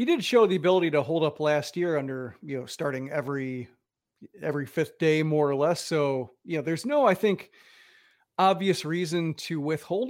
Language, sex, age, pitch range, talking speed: English, male, 40-59, 145-175 Hz, 190 wpm